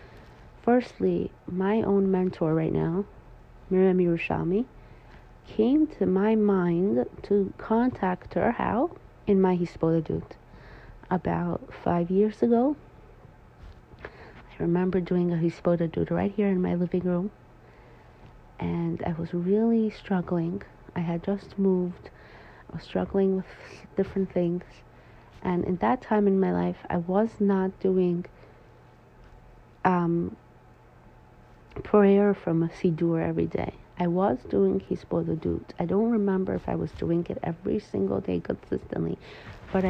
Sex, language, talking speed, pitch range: female, English, 130 wpm, 160-195 Hz